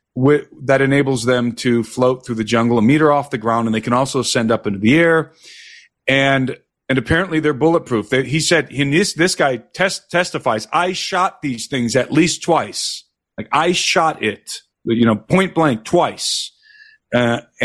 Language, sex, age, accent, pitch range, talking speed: English, male, 40-59, American, 115-150 Hz, 175 wpm